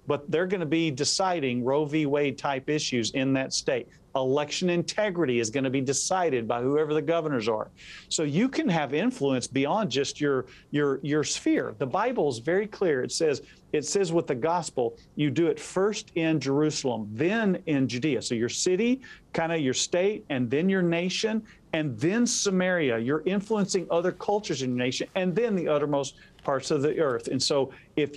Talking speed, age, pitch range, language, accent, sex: 185 wpm, 50-69, 135-180 Hz, English, American, male